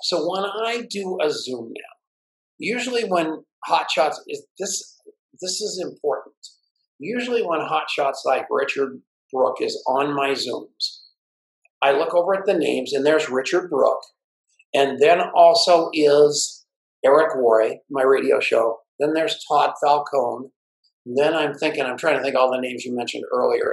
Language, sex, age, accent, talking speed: English, male, 50-69, American, 160 wpm